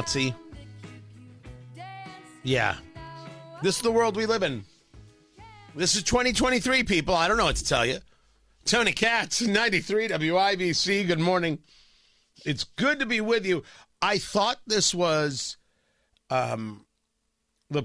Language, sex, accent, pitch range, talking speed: English, male, American, 130-215 Hz, 125 wpm